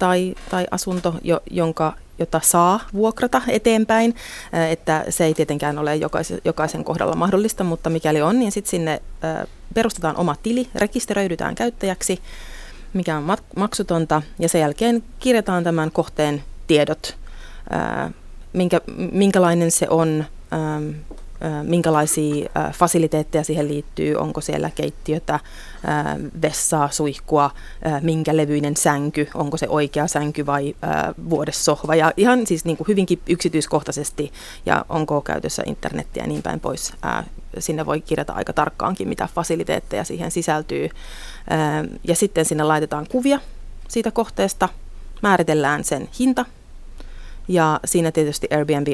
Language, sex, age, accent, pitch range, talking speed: Finnish, female, 30-49, native, 150-185 Hz, 120 wpm